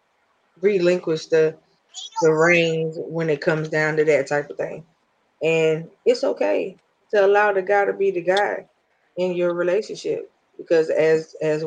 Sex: female